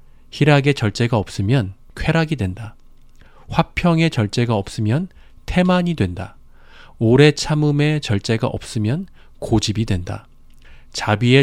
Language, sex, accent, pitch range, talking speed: English, male, Korean, 105-140 Hz, 90 wpm